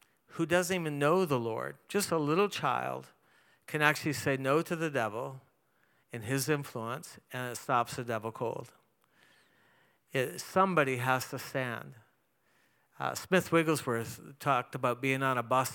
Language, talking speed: English, 150 wpm